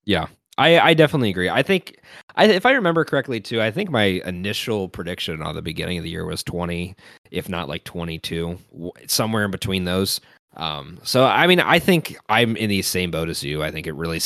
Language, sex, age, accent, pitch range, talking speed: English, male, 20-39, American, 85-120 Hz, 215 wpm